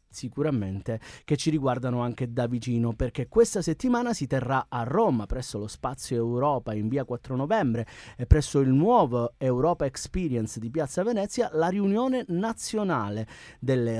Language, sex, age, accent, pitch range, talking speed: Italian, male, 30-49, native, 120-175 Hz, 150 wpm